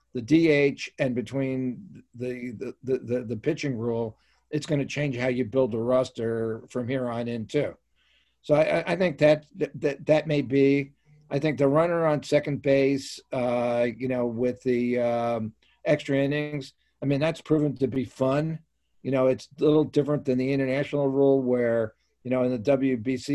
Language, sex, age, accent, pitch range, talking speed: English, male, 50-69, American, 125-140 Hz, 185 wpm